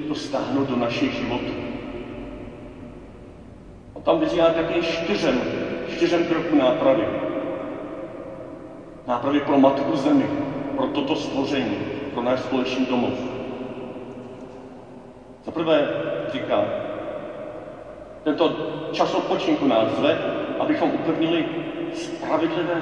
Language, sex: Czech, male